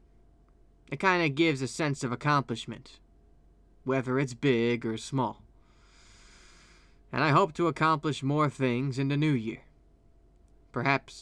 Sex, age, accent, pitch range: male, 20-39, American, 95-140 Hz